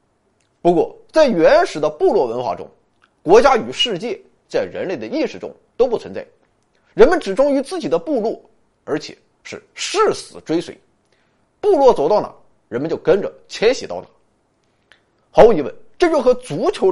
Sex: male